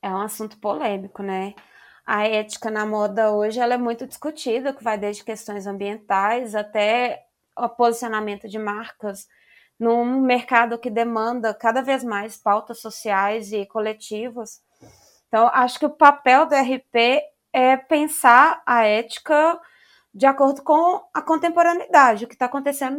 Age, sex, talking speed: 20-39, female, 140 wpm